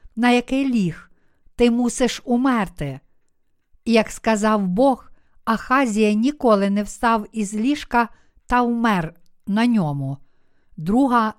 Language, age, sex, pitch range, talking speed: Ukrainian, 50-69, female, 205-245 Hz, 105 wpm